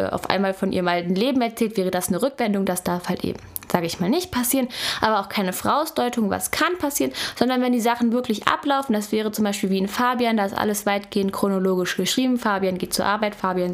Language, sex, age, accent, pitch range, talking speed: German, female, 20-39, German, 195-245 Hz, 225 wpm